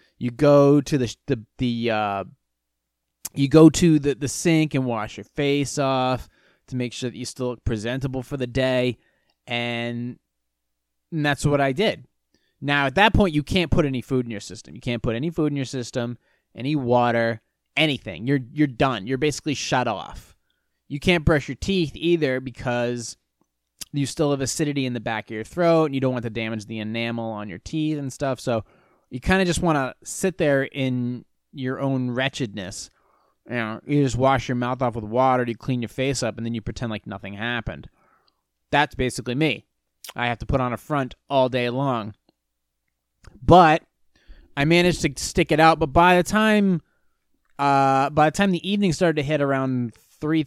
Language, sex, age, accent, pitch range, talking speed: English, male, 20-39, American, 115-150 Hz, 195 wpm